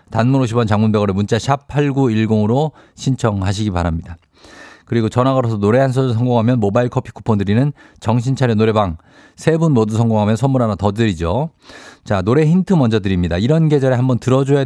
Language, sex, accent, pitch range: Korean, male, native, 100-140 Hz